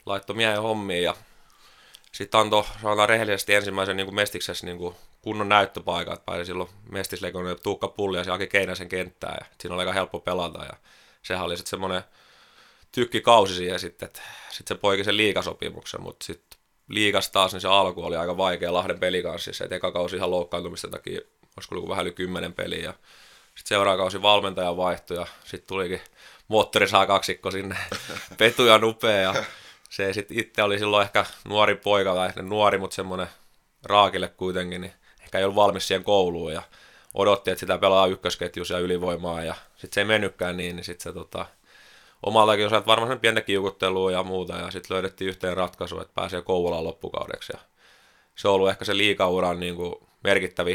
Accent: native